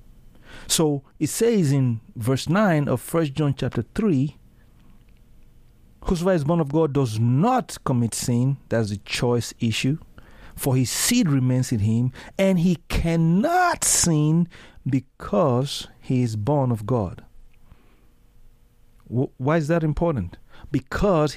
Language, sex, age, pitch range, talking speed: English, male, 50-69, 115-155 Hz, 130 wpm